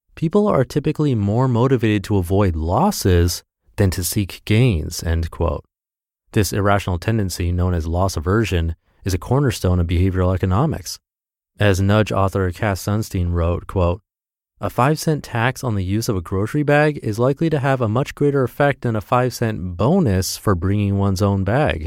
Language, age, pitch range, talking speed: English, 30-49, 90-120 Hz, 175 wpm